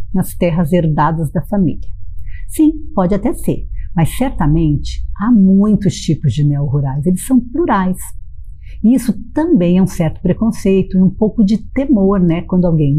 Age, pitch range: 50-69, 155-215 Hz